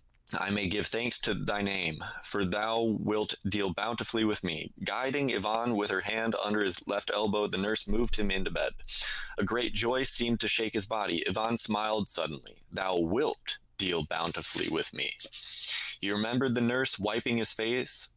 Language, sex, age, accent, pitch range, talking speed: English, male, 20-39, American, 100-115 Hz, 175 wpm